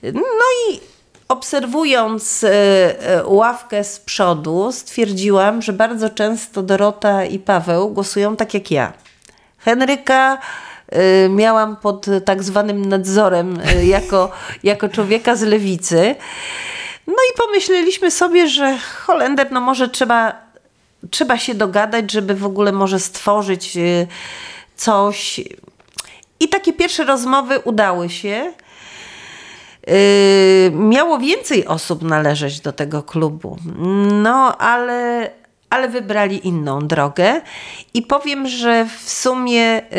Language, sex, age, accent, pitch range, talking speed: Polish, female, 40-59, native, 195-250 Hz, 105 wpm